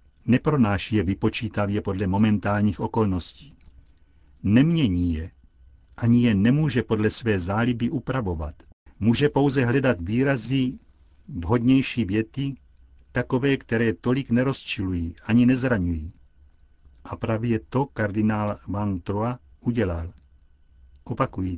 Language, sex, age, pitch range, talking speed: Czech, male, 60-79, 85-125 Hz, 95 wpm